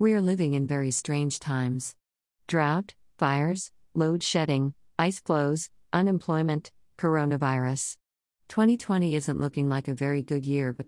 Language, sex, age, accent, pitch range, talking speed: English, female, 50-69, American, 130-160 Hz, 130 wpm